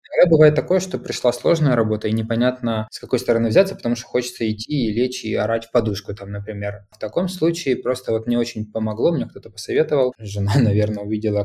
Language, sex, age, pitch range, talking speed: Russian, male, 20-39, 105-145 Hz, 205 wpm